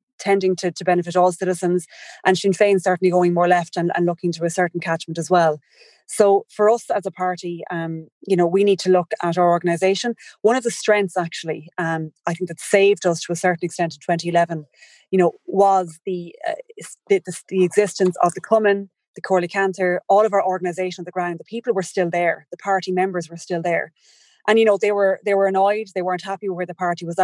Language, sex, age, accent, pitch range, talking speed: English, female, 20-39, Irish, 175-195 Hz, 225 wpm